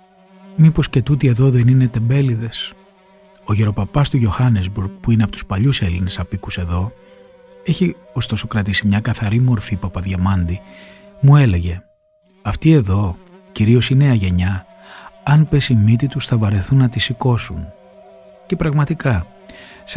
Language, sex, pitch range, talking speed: Greek, male, 95-140 Hz, 140 wpm